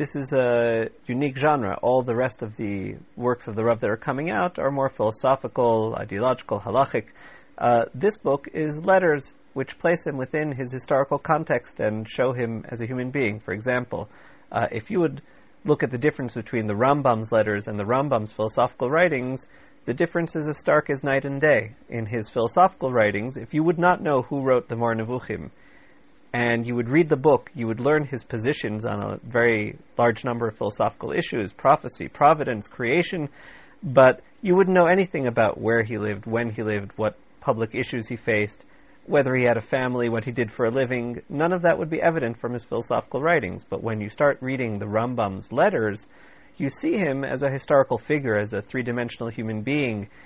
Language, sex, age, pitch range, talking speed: English, male, 40-59, 115-145 Hz, 195 wpm